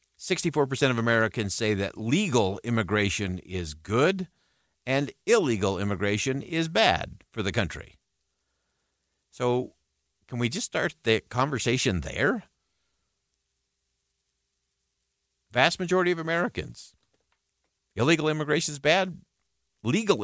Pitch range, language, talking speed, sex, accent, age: 100-135 Hz, English, 100 wpm, male, American, 50-69